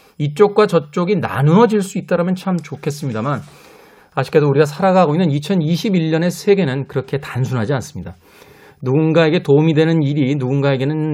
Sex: male